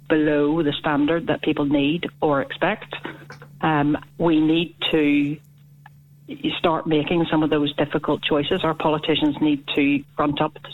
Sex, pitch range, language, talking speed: female, 145-165 Hz, English, 145 wpm